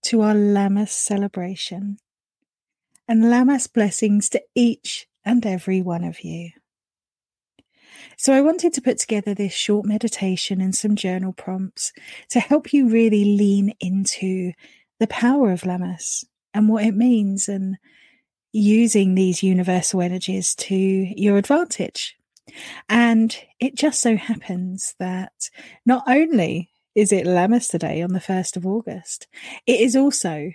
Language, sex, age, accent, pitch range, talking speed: English, female, 40-59, British, 190-225 Hz, 135 wpm